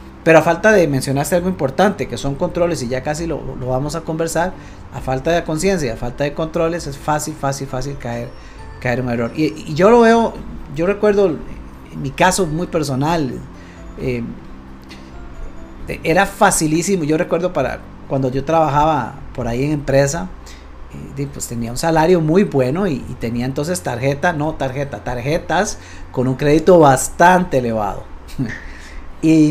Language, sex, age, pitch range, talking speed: Spanish, male, 40-59, 130-185 Hz, 160 wpm